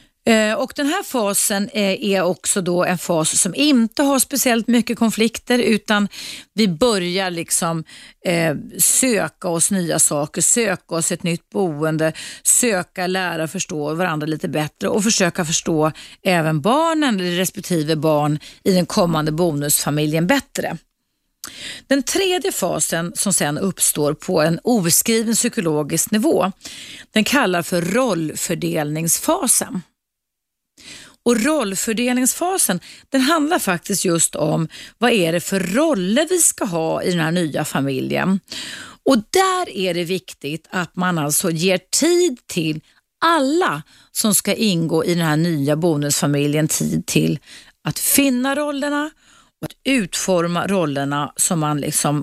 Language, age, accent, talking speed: Swedish, 40-59, native, 130 wpm